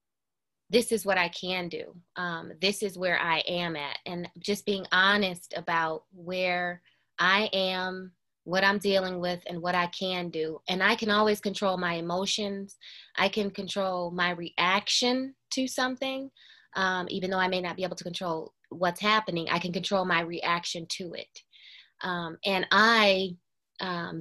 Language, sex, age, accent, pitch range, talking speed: English, female, 20-39, American, 165-190 Hz, 165 wpm